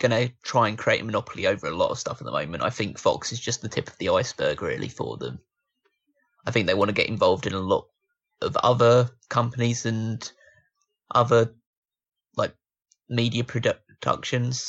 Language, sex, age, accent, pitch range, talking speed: English, male, 20-39, British, 110-135 Hz, 190 wpm